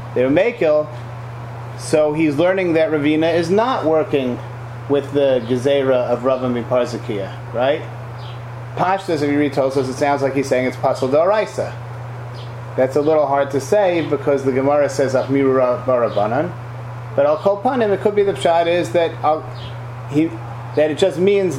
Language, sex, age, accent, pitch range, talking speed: English, male, 30-49, American, 120-160 Hz, 160 wpm